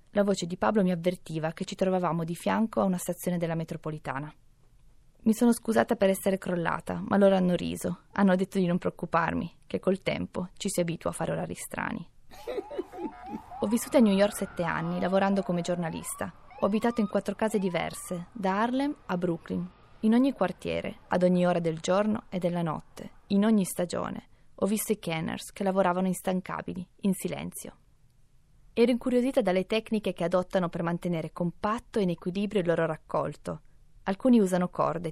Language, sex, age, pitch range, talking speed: Italian, female, 20-39, 170-205 Hz, 175 wpm